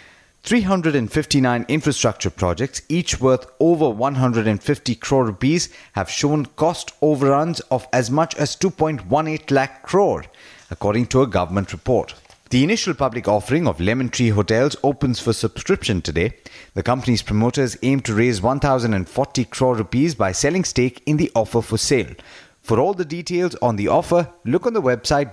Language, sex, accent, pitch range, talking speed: English, male, Indian, 115-150 Hz, 155 wpm